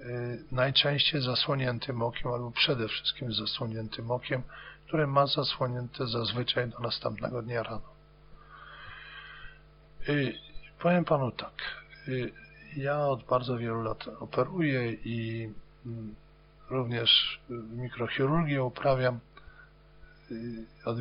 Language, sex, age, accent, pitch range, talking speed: Polish, male, 50-69, native, 115-135 Hz, 90 wpm